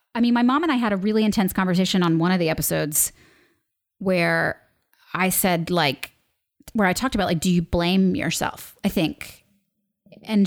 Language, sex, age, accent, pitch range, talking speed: English, female, 30-49, American, 175-245 Hz, 185 wpm